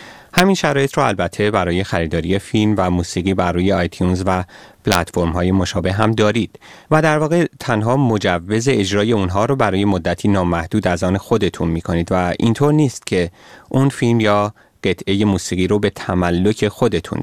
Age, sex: 30-49, male